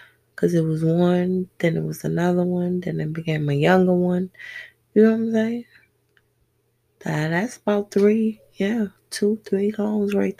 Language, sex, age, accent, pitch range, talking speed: English, female, 20-39, American, 170-225 Hz, 160 wpm